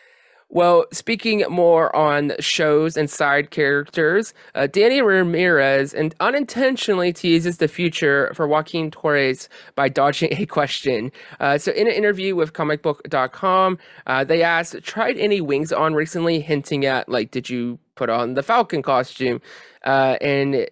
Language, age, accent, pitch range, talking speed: English, 20-39, American, 135-175 Hz, 140 wpm